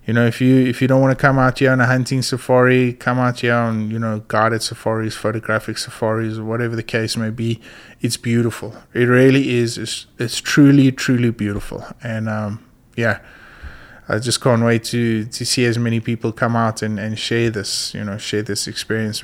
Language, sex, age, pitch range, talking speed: English, male, 20-39, 115-135 Hz, 205 wpm